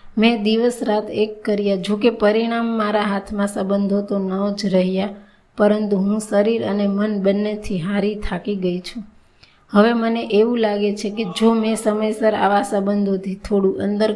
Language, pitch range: Gujarati, 195-215 Hz